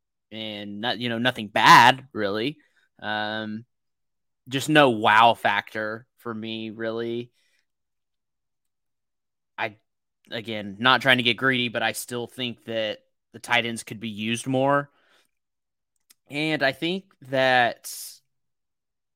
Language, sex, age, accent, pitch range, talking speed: English, male, 20-39, American, 110-130 Hz, 120 wpm